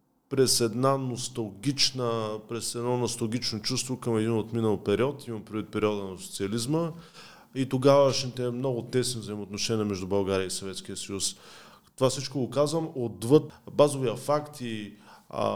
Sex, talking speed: male, 125 wpm